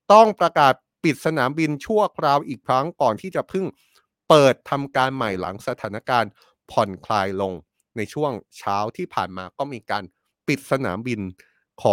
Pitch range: 110-145 Hz